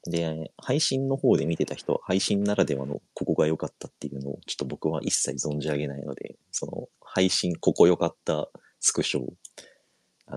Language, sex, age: Japanese, male, 40-59